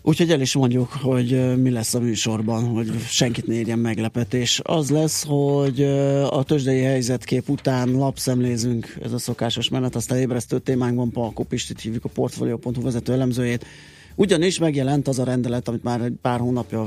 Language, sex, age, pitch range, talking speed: Hungarian, male, 30-49, 120-135 Hz, 165 wpm